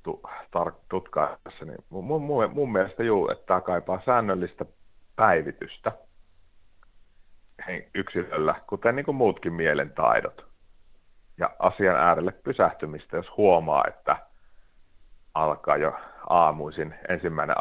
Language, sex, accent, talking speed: Finnish, male, native, 95 wpm